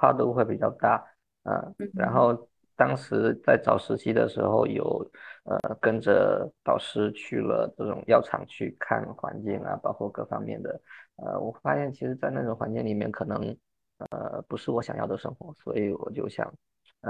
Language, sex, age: Chinese, male, 20-39